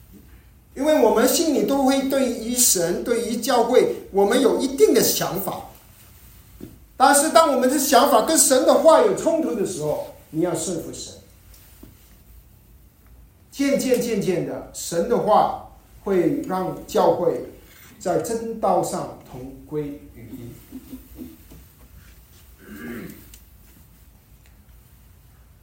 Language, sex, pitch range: Chinese, male, 145-245 Hz